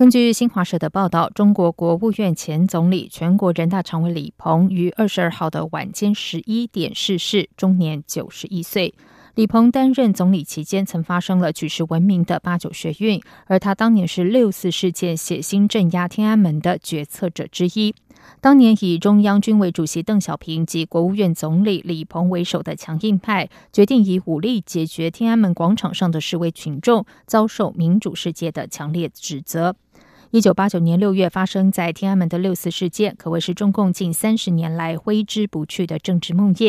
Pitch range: 170-210 Hz